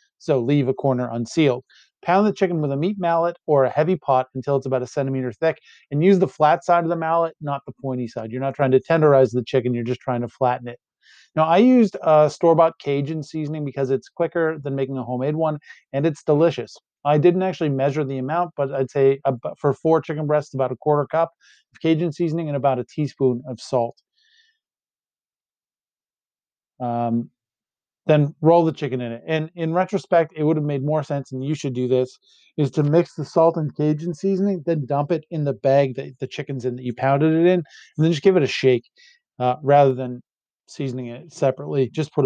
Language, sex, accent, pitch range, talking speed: English, male, American, 130-165 Hz, 210 wpm